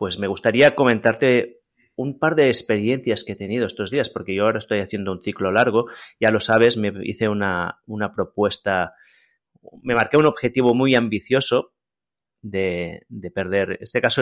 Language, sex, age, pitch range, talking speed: Spanish, male, 30-49, 95-115 Hz, 170 wpm